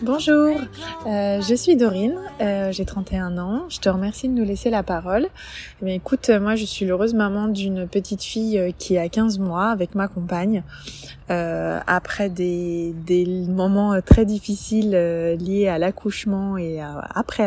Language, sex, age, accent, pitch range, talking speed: French, female, 20-39, French, 175-210 Hz, 165 wpm